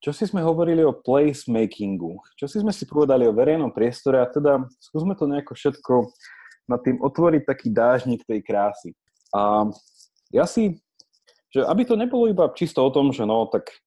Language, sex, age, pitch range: Slovak, male, 20-39, 100-145 Hz